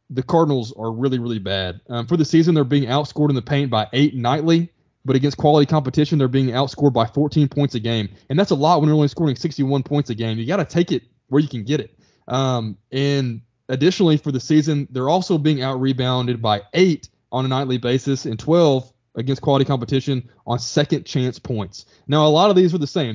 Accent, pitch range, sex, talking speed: American, 120-150 Hz, male, 225 wpm